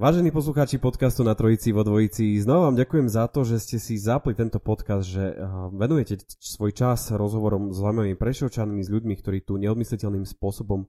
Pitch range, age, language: 100-125 Hz, 20-39, Slovak